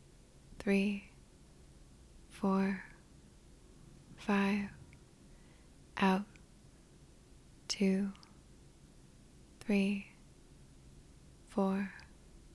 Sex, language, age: female, English, 20-39